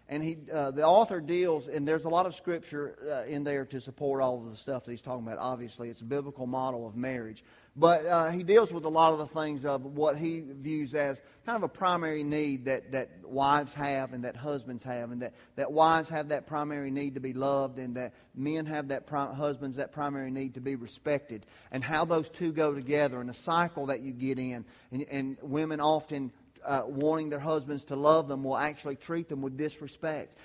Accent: American